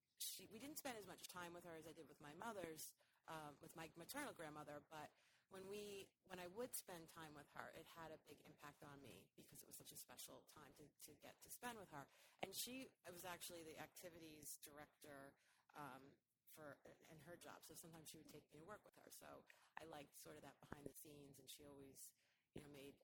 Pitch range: 150-175 Hz